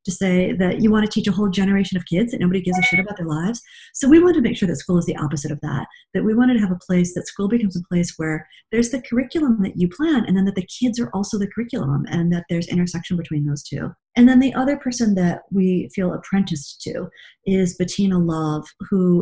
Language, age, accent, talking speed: English, 40-59, American, 255 wpm